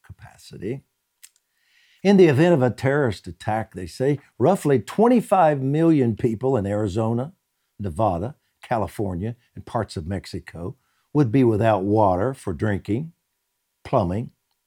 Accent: American